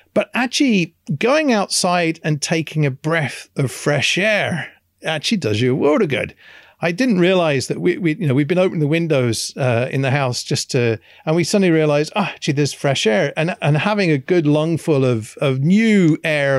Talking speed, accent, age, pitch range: 205 wpm, British, 40-59, 130-175 Hz